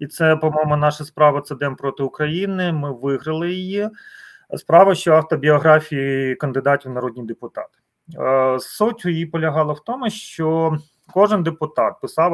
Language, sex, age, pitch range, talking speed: Ukrainian, male, 30-49, 140-185 Hz, 140 wpm